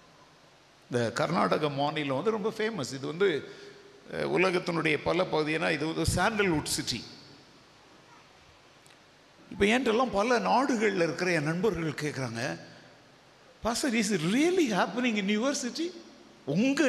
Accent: native